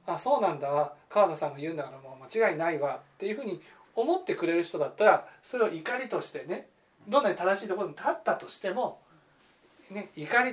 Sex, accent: male, native